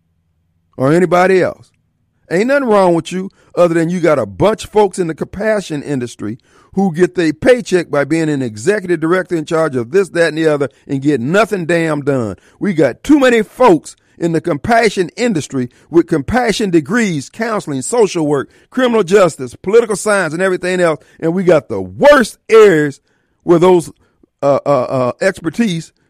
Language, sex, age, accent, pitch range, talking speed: English, male, 50-69, American, 135-195 Hz, 175 wpm